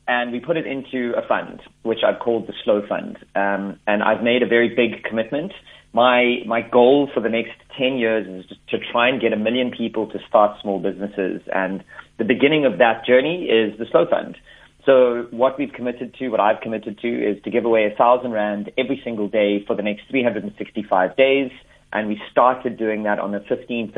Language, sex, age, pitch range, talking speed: English, male, 30-49, 110-125 Hz, 210 wpm